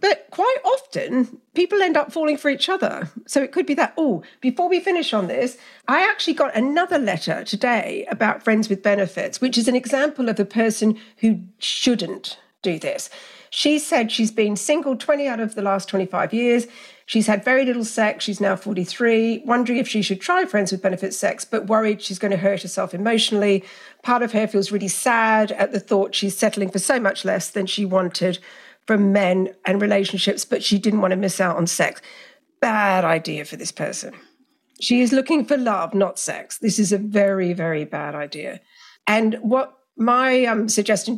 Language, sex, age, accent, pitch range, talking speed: English, female, 50-69, British, 200-255 Hz, 195 wpm